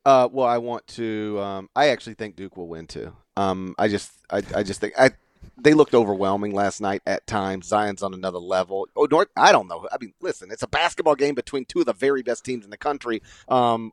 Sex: male